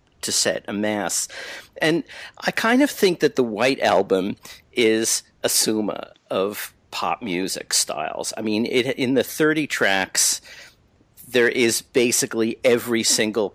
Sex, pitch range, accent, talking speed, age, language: male, 90-110 Hz, American, 140 wpm, 50-69, English